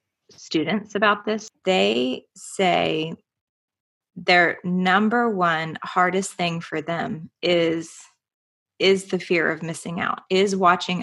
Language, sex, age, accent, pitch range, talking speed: English, female, 30-49, American, 170-195 Hz, 115 wpm